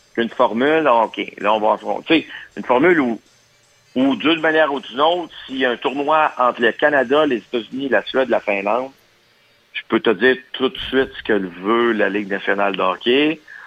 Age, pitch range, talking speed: 50-69, 105-130 Hz, 195 wpm